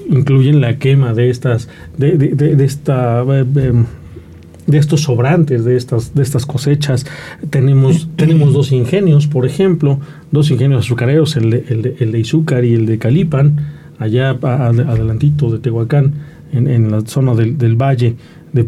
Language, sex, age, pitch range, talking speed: Spanish, male, 40-59, 130-155 Hz, 165 wpm